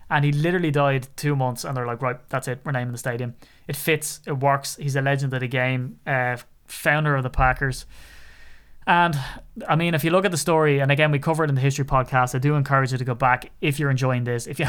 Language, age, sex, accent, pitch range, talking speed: English, 20-39, male, Irish, 125-145 Hz, 255 wpm